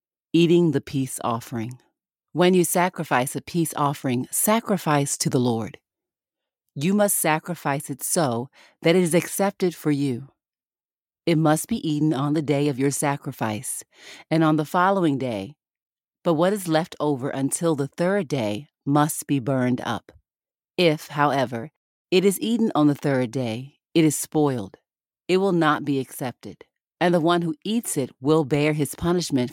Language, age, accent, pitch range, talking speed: English, 40-59, American, 135-170 Hz, 165 wpm